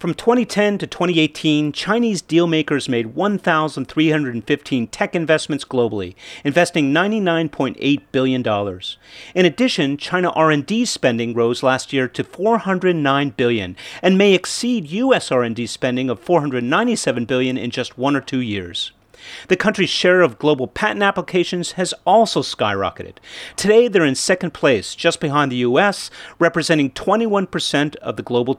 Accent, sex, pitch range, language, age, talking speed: American, male, 130-185 Hz, English, 40-59, 135 wpm